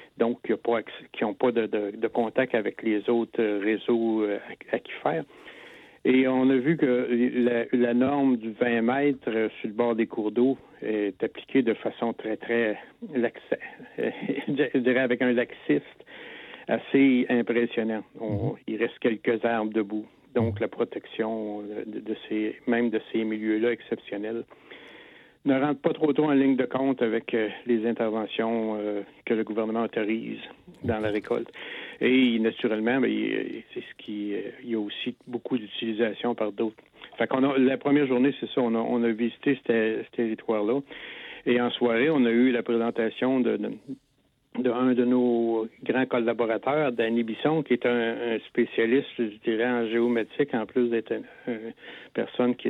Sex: male